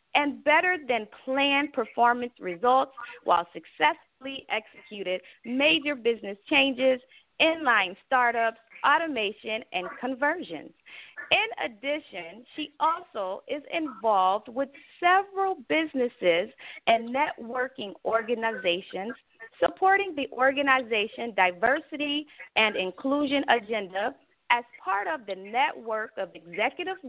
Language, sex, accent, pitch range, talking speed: English, female, American, 215-295 Hz, 90 wpm